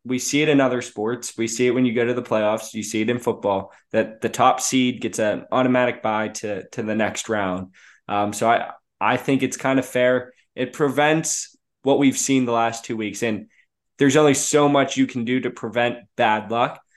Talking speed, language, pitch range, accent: 225 wpm, English, 115-130 Hz, American